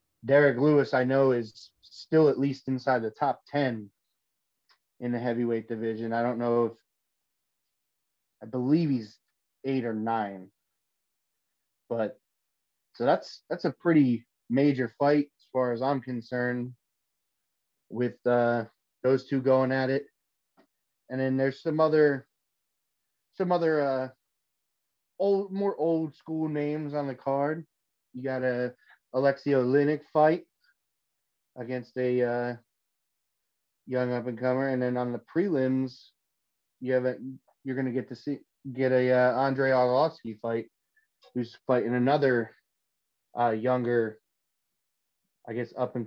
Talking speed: 135 wpm